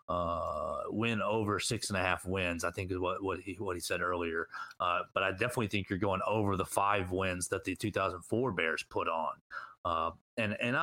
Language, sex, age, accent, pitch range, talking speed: English, male, 30-49, American, 95-115 Hz, 210 wpm